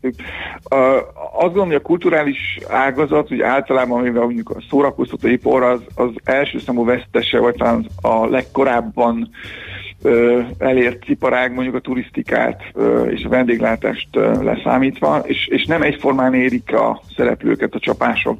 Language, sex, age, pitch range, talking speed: Hungarian, male, 50-69, 120-135 Hz, 125 wpm